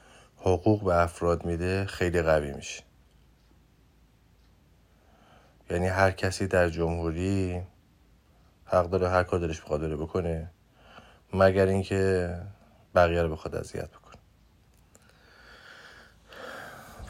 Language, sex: Persian, male